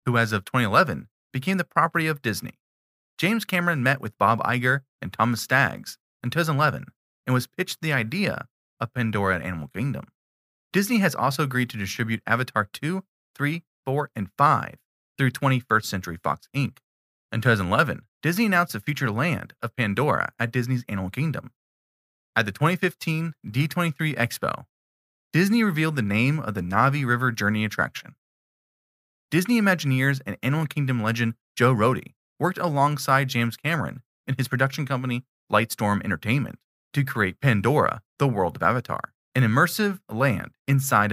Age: 30-49